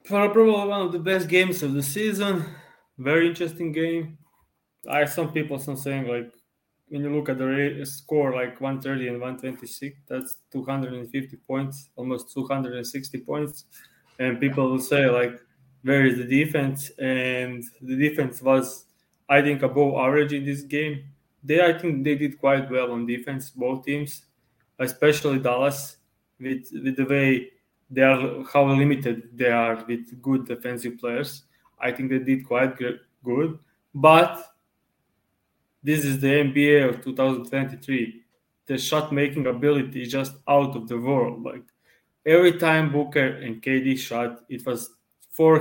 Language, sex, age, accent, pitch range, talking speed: English, male, 20-39, Serbian, 125-145 Hz, 150 wpm